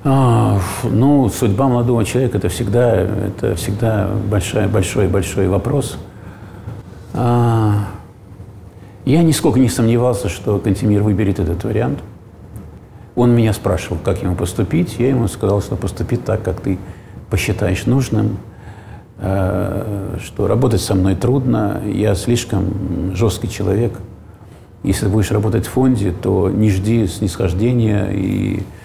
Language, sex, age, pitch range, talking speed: Russian, male, 50-69, 95-115 Hz, 120 wpm